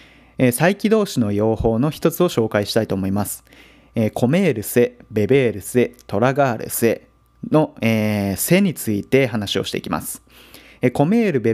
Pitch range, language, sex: 110-150 Hz, Japanese, male